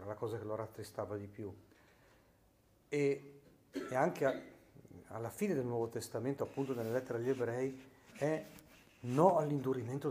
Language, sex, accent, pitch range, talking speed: Italian, male, native, 110-140 Hz, 150 wpm